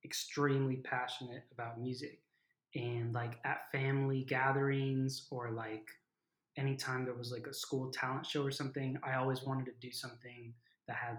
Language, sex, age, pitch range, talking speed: English, male, 20-39, 125-145 Hz, 155 wpm